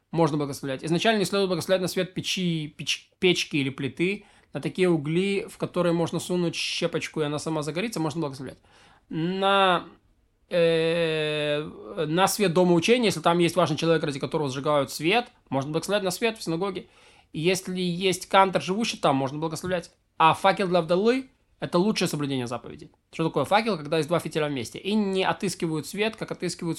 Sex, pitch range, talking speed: male, 160-195 Hz, 170 wpm